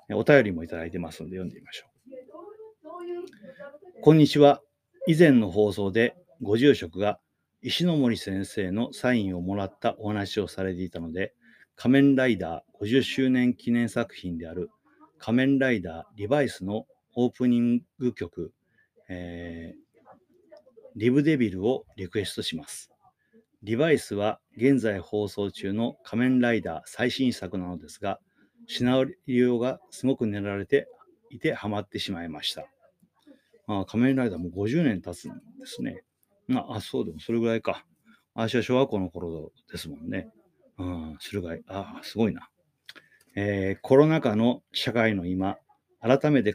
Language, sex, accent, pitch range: Japanese, male, native, 100-145 Hz